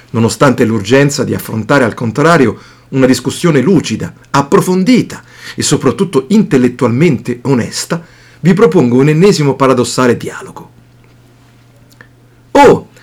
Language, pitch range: Italian, 120-170 Hz